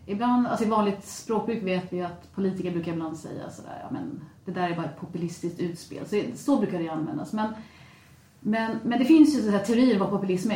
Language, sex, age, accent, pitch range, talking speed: Swedish, female, 30-49, native, 175-210 Hz, 215 wpm